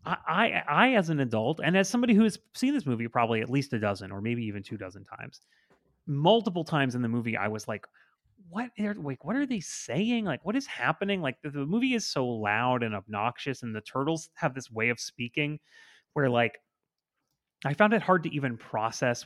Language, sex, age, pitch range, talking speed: English, male, 30-49, 110-165 Hz, 220 wpm